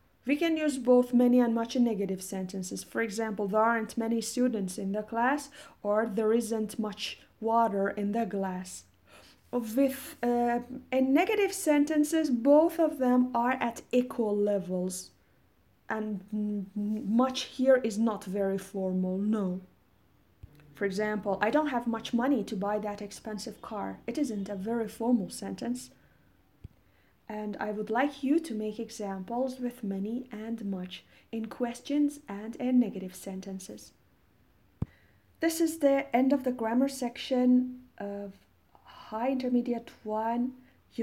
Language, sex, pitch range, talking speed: Persian, female, 200-250 Hz, 140 wpm